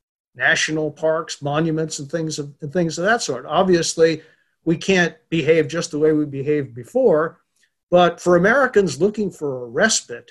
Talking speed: 155 wpm